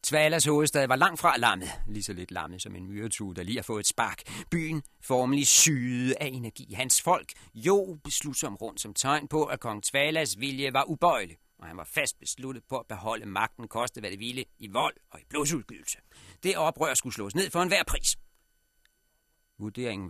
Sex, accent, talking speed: male, native, 195 wpm